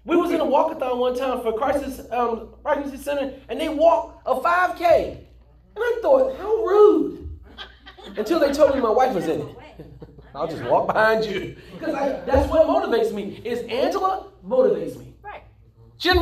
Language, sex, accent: English, male, American